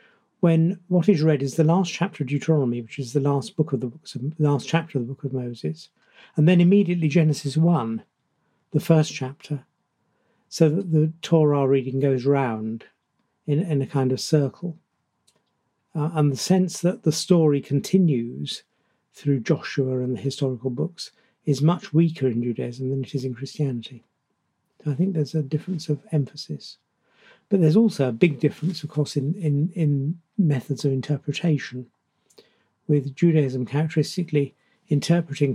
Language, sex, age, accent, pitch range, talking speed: English, male, 50-69, British, 135-165 Hz, 160 wpm